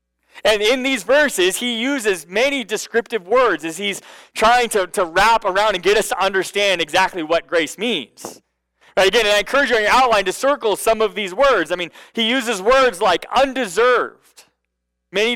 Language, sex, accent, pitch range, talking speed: English, male, American, 125-215 Hz, 190 wpm